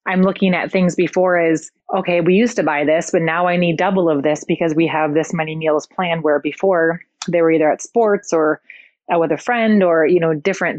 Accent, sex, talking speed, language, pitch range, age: American, female, 230 wpm, English, 160-185 Hz, 30-49